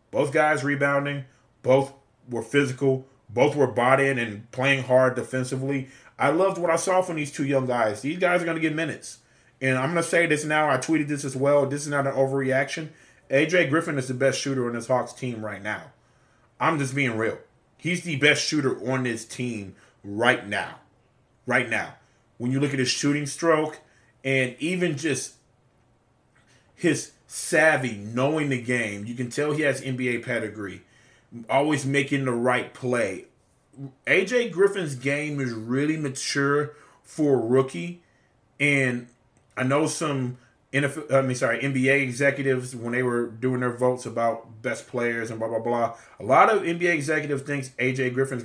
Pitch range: 120-145 Hz